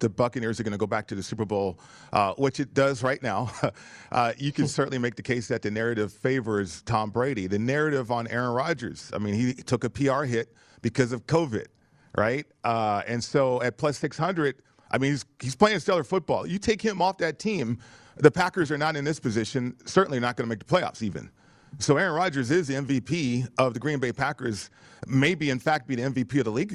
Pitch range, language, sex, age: 115-150 Hz, English, male, 40-59